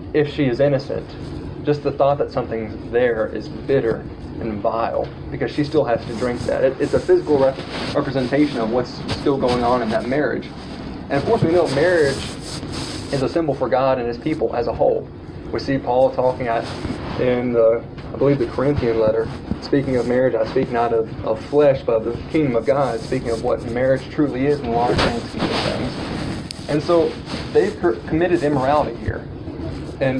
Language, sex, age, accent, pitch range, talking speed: English, male, 20-39, American, 120-150 Hz, 195 wpm